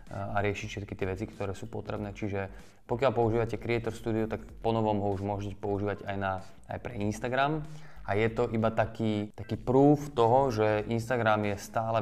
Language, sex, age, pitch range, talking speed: Slovak, male, 20-39, 100-115 Hz, 185 wpm